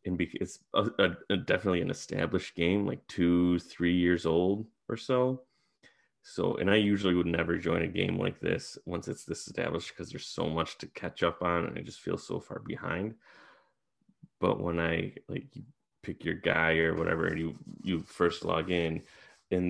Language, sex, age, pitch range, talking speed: English, male, 20-39, 85-100 Hz, 190 wpm